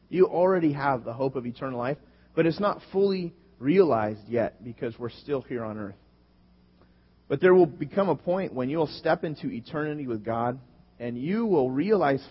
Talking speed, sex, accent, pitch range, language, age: 180 wpm, male, American, 110-165 Hz, English, 30-49